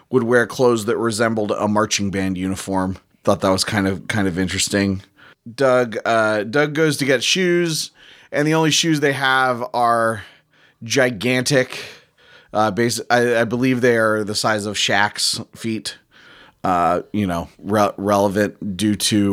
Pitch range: 110-140 Hz